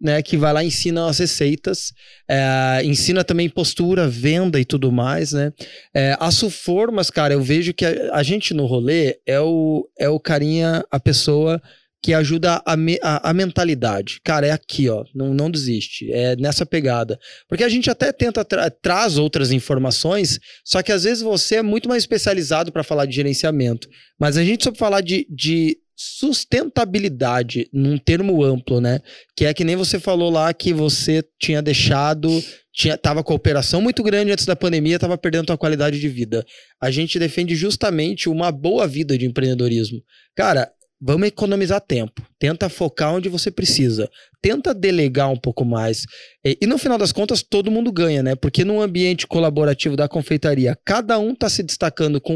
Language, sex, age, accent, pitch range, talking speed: Portuguese, male, 20-39, Brazilian, 140-180 Hz, 185 wpm